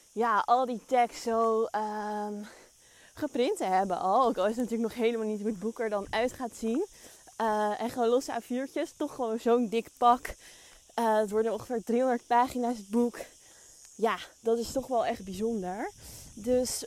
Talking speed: 180 wpm